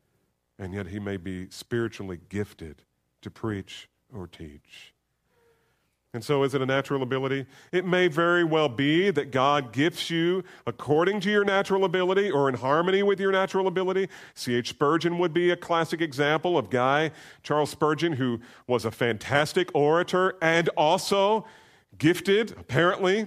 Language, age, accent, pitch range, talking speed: English, 40-59, American, 110-165 Hz, 150 wpm